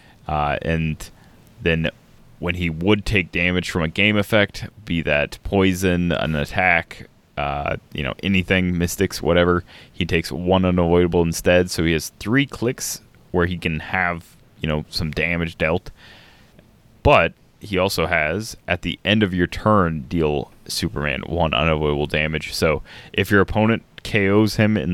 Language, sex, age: English, male, 20-39